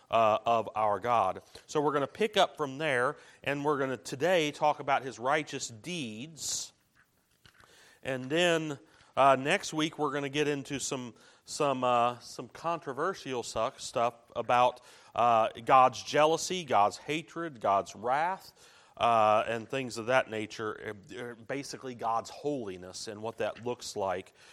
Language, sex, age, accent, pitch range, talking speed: English, male, 40-59, American, 115-150 Hz, 145 wpm